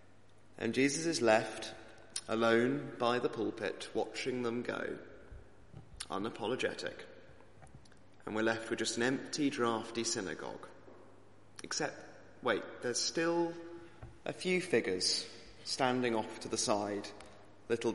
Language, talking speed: English, 115 wpm